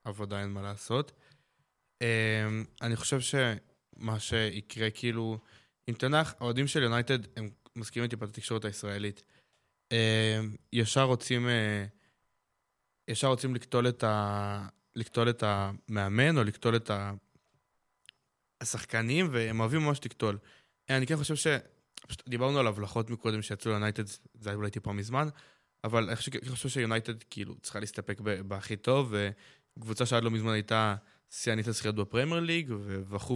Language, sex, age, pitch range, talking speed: Hebrew, male, 20-39, 105-120 Hz, 135 wpm